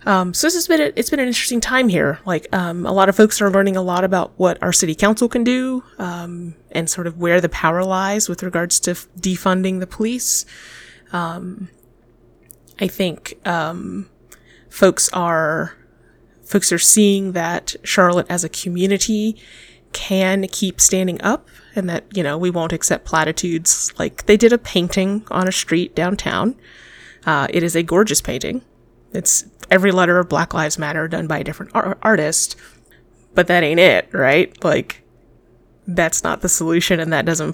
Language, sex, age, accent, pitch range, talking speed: English, female, 20-39, American, 170-200 Hz, 175 wpm